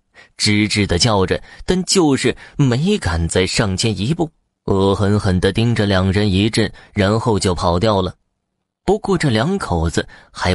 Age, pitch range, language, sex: 20-39, 95-135 Hz, Chinese, male